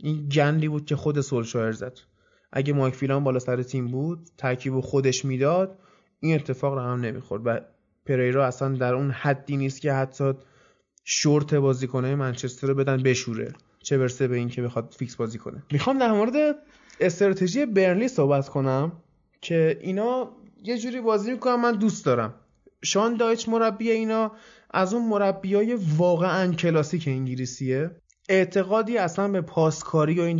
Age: 20-39